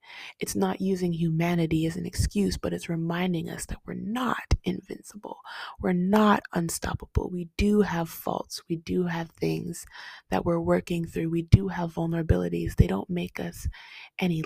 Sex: female